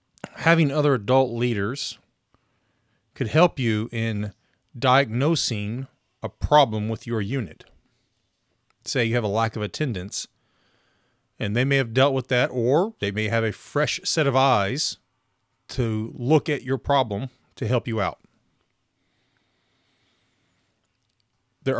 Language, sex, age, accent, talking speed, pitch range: English, male, 30-49, American, 130 wpm, 110-135 Hz